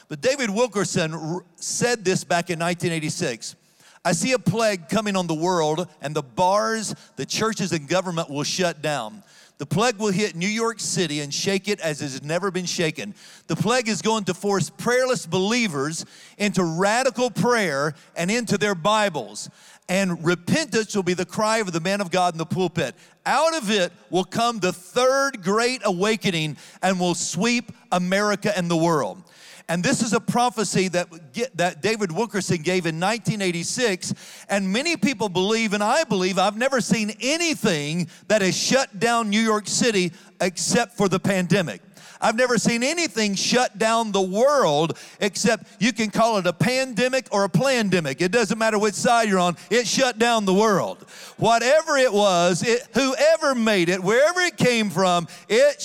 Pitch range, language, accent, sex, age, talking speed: 180-235 Hz, English, American, male, 40-59, 175 wpm